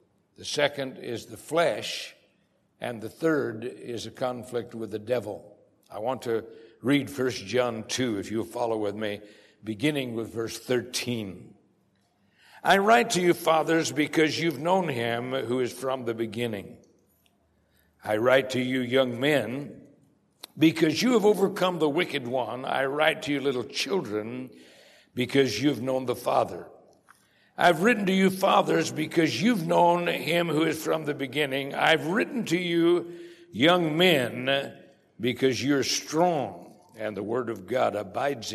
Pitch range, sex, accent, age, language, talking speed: 120-170 Hz, male, American, 60-79, English, 150 wpm